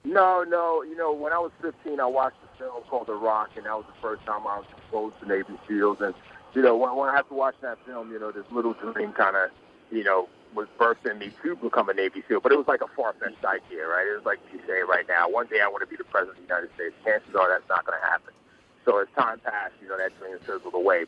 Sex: male